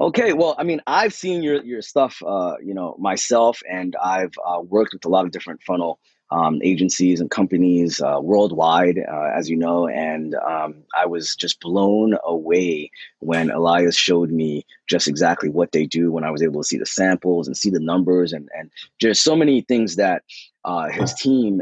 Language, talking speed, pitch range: English, 195 wpm, 85-105 Hz